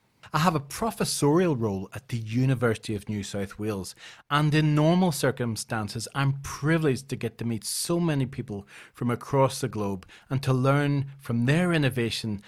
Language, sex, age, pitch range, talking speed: English, male, 40-59, 110-145 Hz, 170 wpm